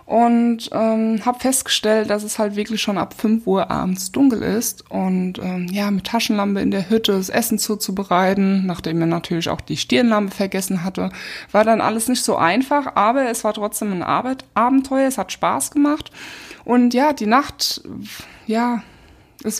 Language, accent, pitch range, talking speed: German, German, 190-235 Hz, 175 wpm